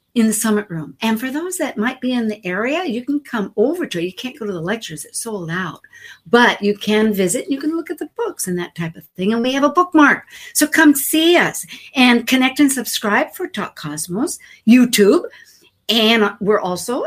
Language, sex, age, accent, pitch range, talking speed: English, female, 60-79, American, 165-250 Hz, 225 wpm